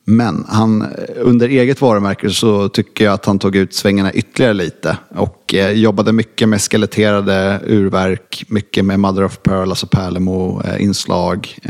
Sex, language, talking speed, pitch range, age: male, English, 150 wpm, 95-110 Hz, 30-49